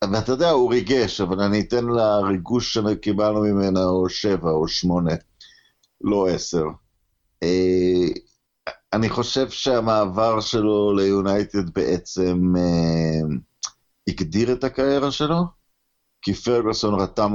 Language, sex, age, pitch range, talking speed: Hebrew, male, 50-69, 95-135 Hz, 105 wpm